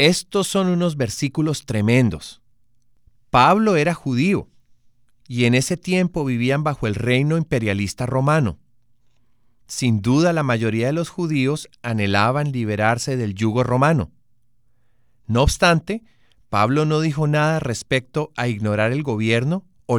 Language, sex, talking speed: Spanish, male, 125 wpm